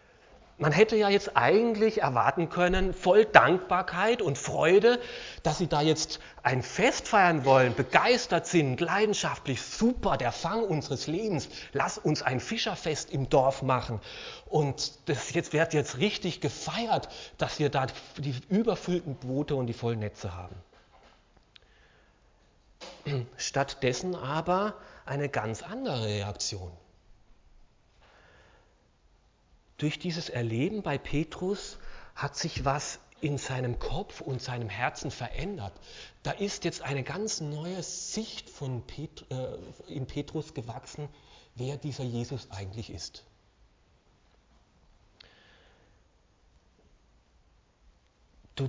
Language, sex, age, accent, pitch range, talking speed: German, male, 40-59, German, 110-165 Hz, 110 wpm